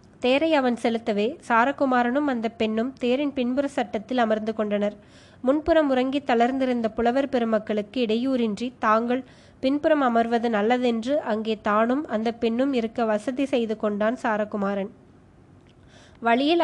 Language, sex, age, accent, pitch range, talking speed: Tamil, female, 20-39, native, 225-255 Hz, 110 wpm